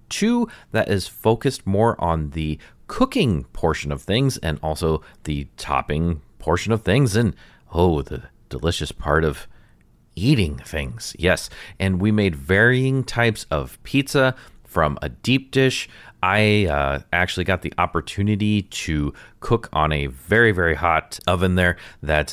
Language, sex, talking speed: English, male, 145 wpm